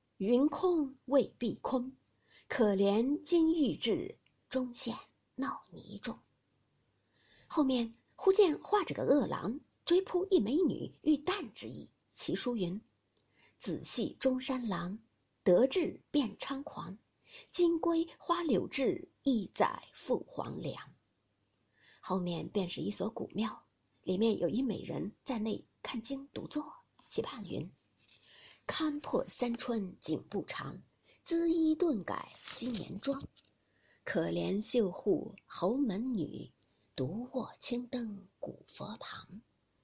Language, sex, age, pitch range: Chinese, female, 50-69, 210-300 Hz